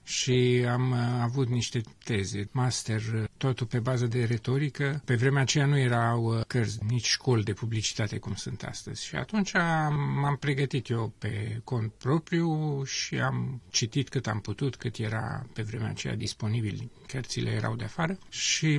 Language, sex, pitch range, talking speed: Romanian, male, 115-140 Hz, 155 wpm